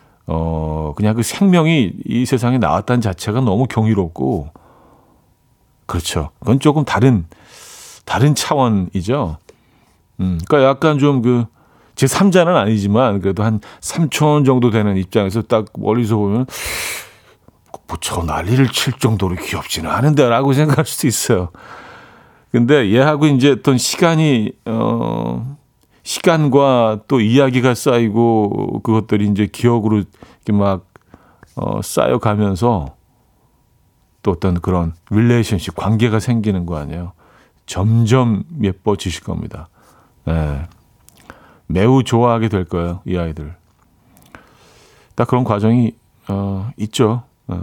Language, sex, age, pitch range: Korean, male, 40-59, 95-130 Hz